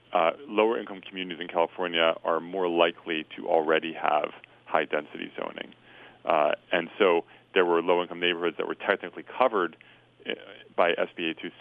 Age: 40-59